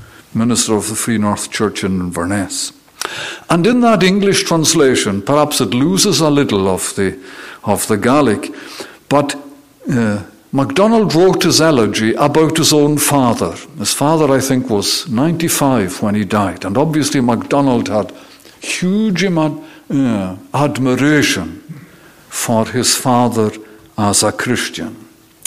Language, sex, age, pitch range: English, male, 60-79, 115-170 Hz